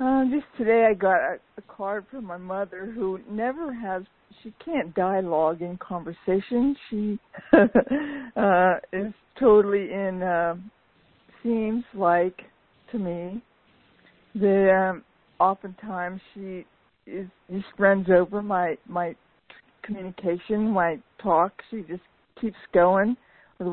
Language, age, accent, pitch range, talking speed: English, 60-79, American, 185-225 Hz, 120 wpm